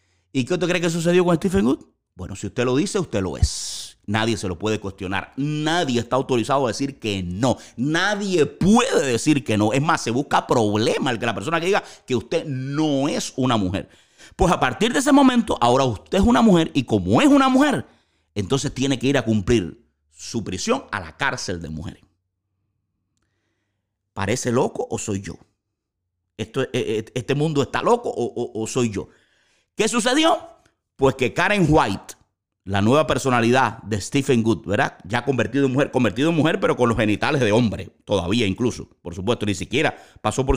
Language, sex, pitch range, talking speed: Spanish, male, 100-150 Hz, 190 wpm